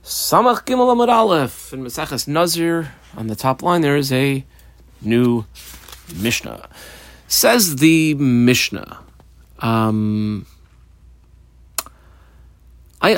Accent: American